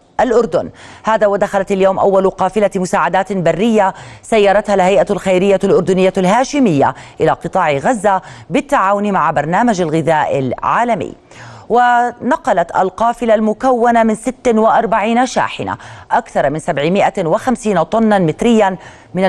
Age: 30-49